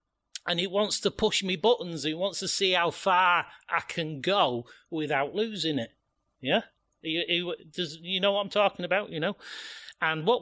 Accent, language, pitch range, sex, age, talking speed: British, English, 130-175 Hz, male, 40-59, 175 wpm